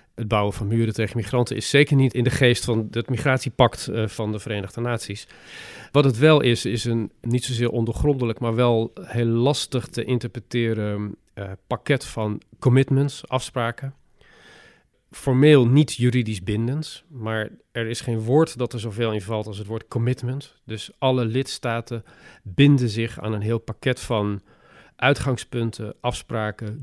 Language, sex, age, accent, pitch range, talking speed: Dutch, male, 40-59, Dutch, 110-125 Hz, 150 wpm